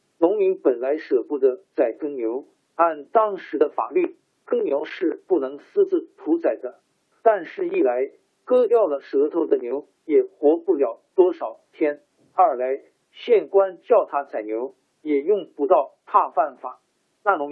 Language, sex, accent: Chinese, male, native